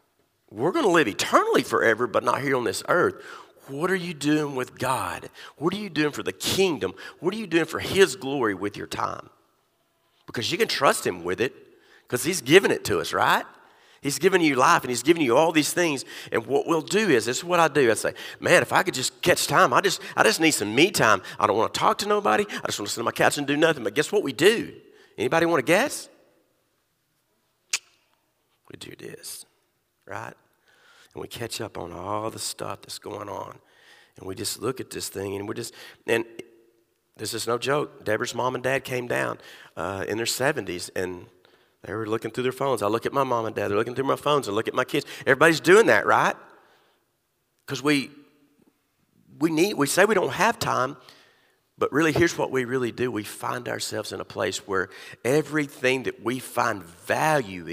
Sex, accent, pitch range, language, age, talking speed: male, American, 115-170 Hz, English, 40-59, 220 wpm